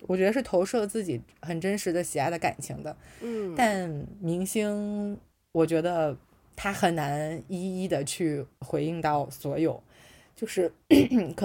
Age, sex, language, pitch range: 20-39, female, Chinese, 160-210 Hz